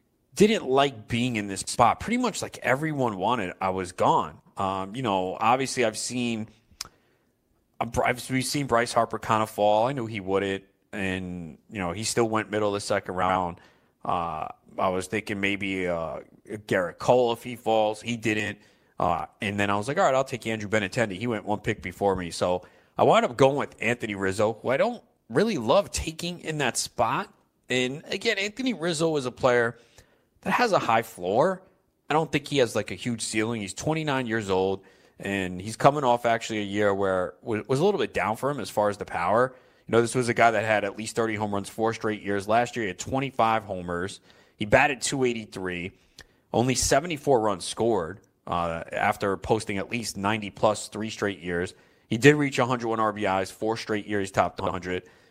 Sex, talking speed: male, 205 wpm